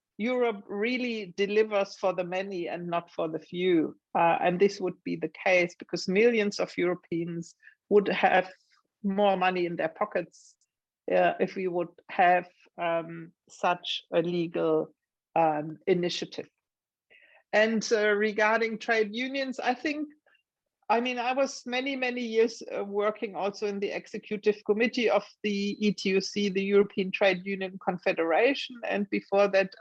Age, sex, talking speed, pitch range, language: 50-69, female, 145 wpm, 185-215 Hz, English